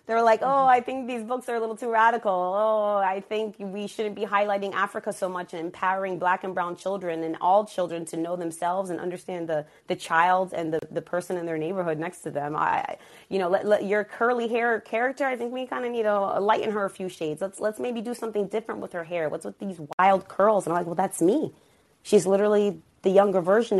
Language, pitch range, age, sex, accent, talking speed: English, 160-205 Hz, 30-49, female, American, 240 wpm